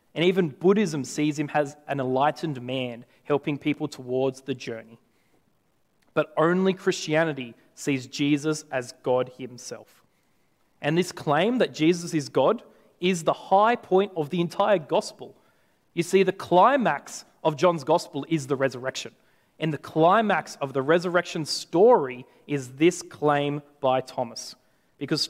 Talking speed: 140 wpm